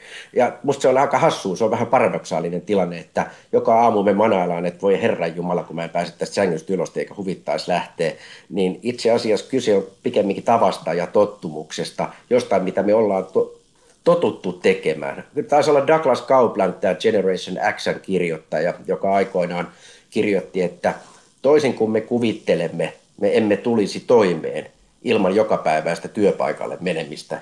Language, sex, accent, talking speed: Finnish, male, native, 155 wpm